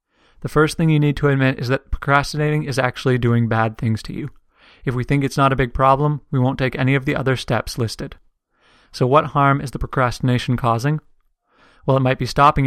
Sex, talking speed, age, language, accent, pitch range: male, 220 wpm, 30-49, English, American, 120-140 Hz